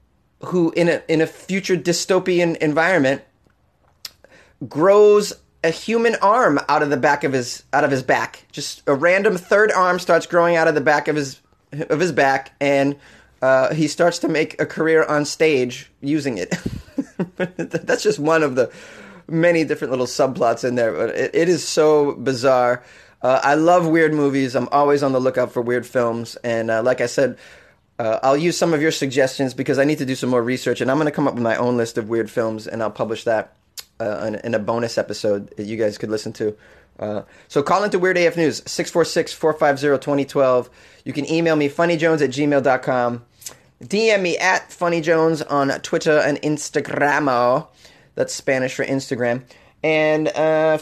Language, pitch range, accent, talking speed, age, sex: English, 130-165 Hz, American, 190 wpm, 30-49, male